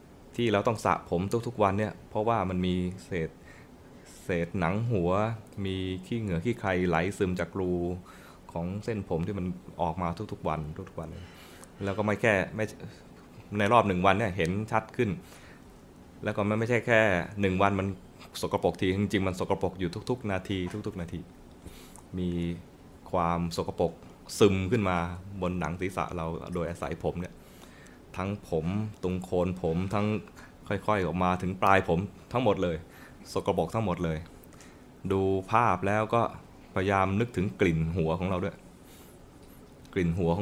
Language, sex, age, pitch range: Thai, male, 20-39, 90-105 Hz